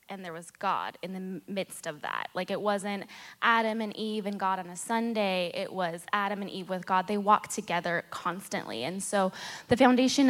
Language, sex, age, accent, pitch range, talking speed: English, female, 10-29, American, 180-230 Hz, 205 wpm